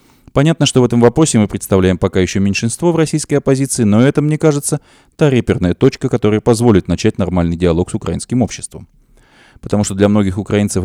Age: 30-49